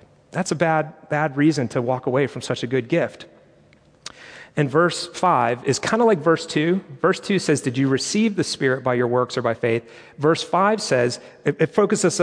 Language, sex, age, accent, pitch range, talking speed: English, male, 40-59, American, 125-170 Hz, 205 wpm